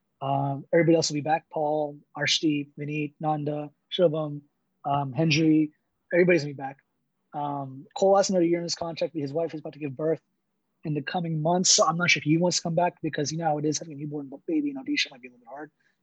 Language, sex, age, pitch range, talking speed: English, male, 20-39, 145-175 Hz, 245 wpm